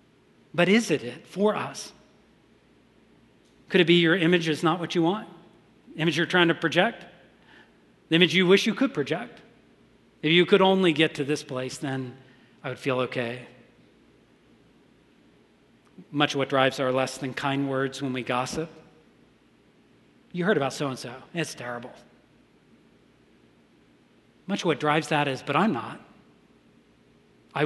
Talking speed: 150 wpm